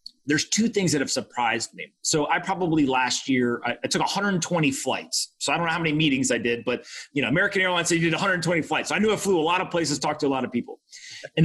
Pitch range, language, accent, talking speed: 130-185 Hz, English, American, 275 wpm